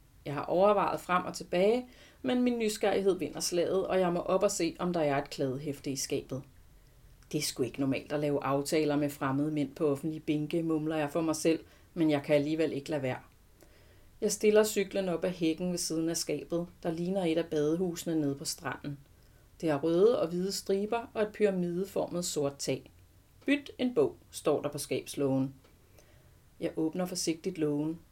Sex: female